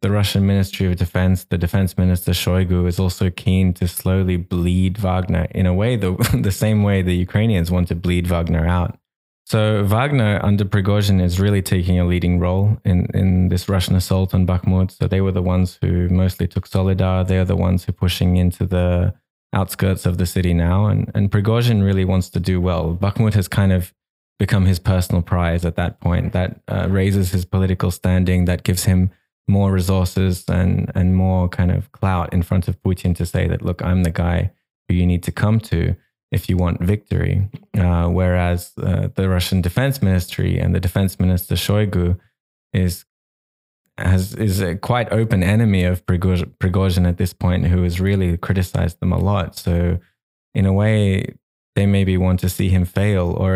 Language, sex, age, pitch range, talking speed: English, male, 20-39, 90-100 Hz, 190 wpm